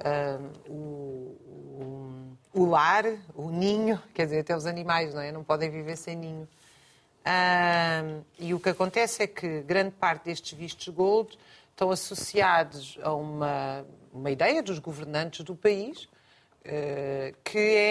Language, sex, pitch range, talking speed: Portuguese, female, 155-205 Hz, 145 wpm